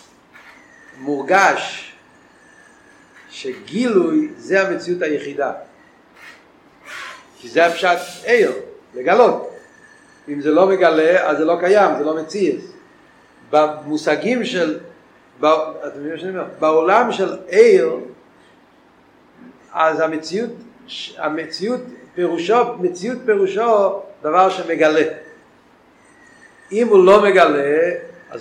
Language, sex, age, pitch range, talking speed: Hebrew, male, 50-69, 165-245 Hz, 75 wpm